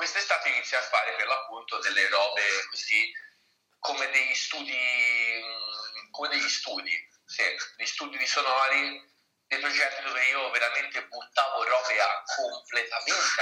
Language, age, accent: Italian, 40-59, native